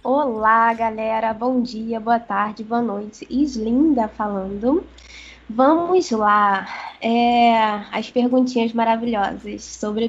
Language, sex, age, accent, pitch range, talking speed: Portuguese, female, 10-29, Brazilian, 215-250 Hz, 100 wpm